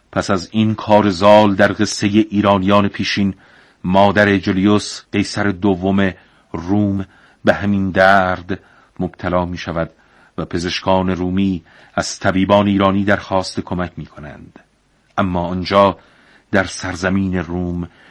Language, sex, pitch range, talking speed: Persian, male, 90-105 Hz, 115 wpm